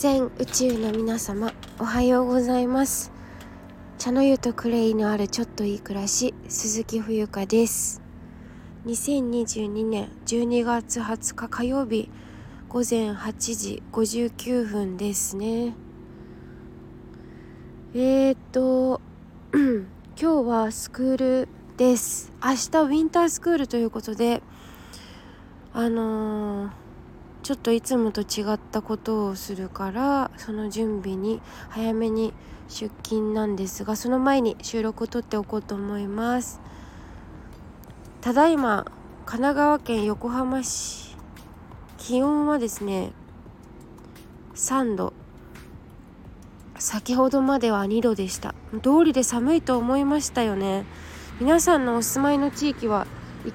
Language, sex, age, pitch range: Japanese, female, 20-39, 205-255 Hz